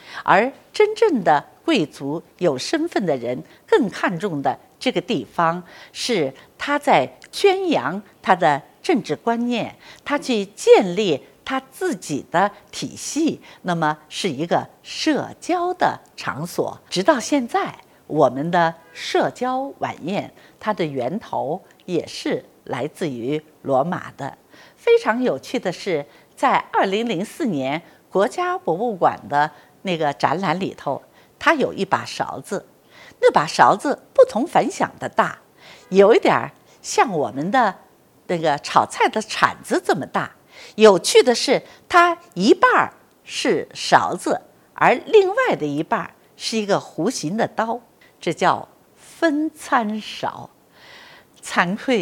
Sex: female